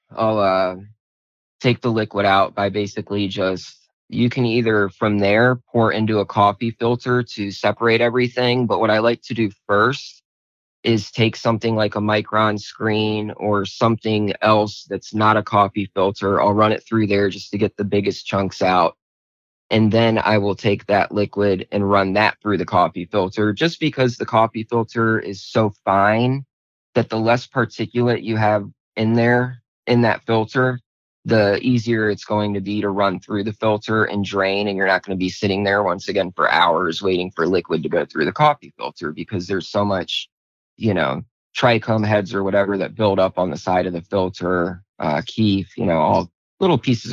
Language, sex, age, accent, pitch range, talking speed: English, male, 20-39, American, 100-115 Hz, 190 wpm